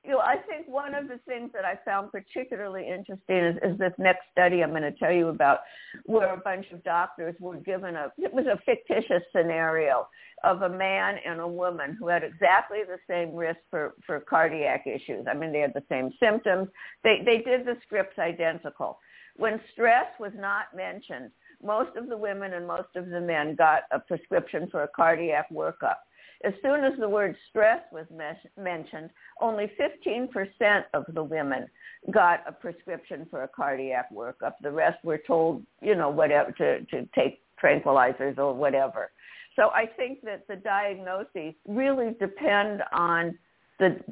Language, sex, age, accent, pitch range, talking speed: English, female, 60-79, American, 165-210 Hz, 175 wpm